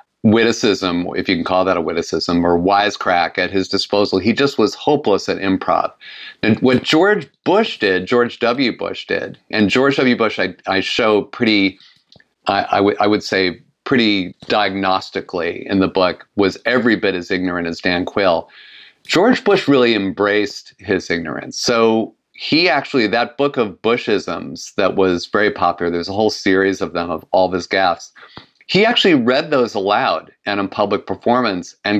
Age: 40-59